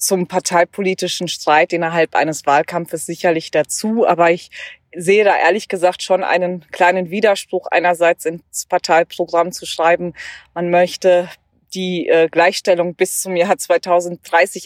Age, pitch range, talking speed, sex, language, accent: 20-39, 160-190 Hz, 125 wpm, female, German, German